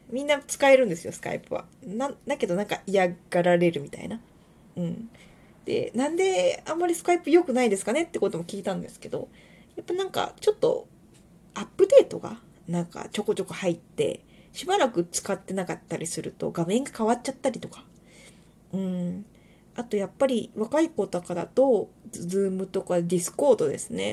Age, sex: 20-39, female